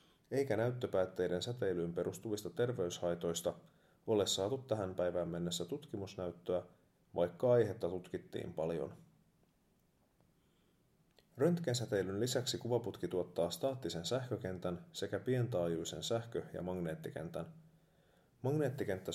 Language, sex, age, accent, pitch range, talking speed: Finnish, male, 30-49, native, 85-125 Hz, 85 wpm